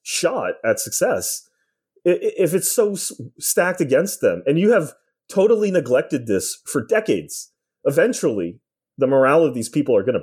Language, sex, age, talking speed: English, male, 30-49, 155 wpm